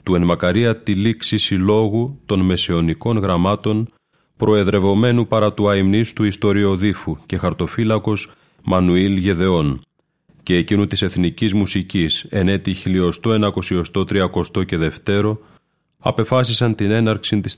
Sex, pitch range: male, 90-105 Hz